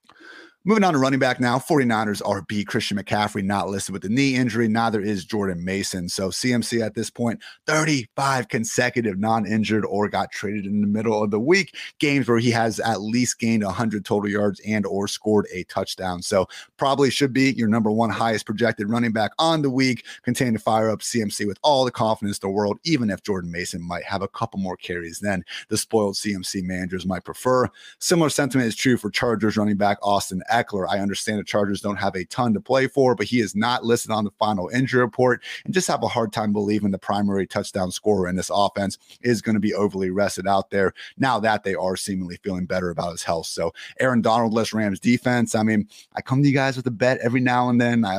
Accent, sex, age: American, male, 30-49